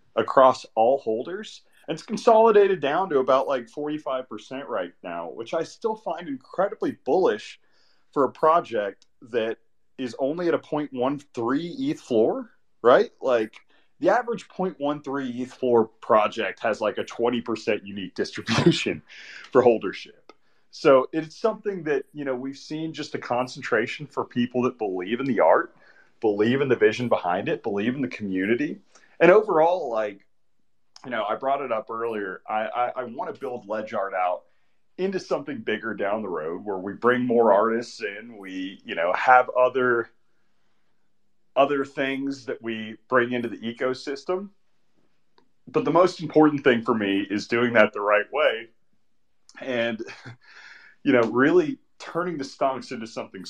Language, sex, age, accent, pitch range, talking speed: English, male, 30-49, American, 115-160 Hz, 155 wpm